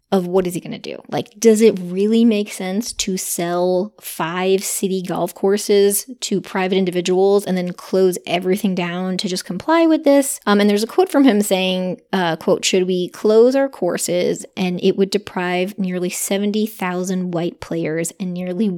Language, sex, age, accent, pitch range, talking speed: English, female, 20-39, American, 180-220 Hz, 180 wpm